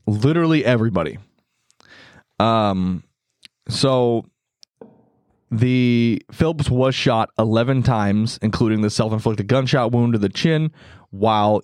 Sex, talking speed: male, 100 wpm